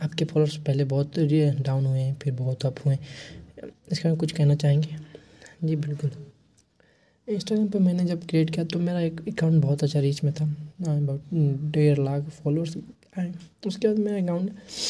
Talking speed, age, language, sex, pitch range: 165 wpm, 20-39, English, male, 145-160 Hz